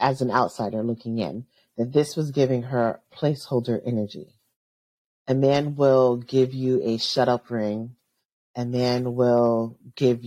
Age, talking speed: 40-59, 145 wpm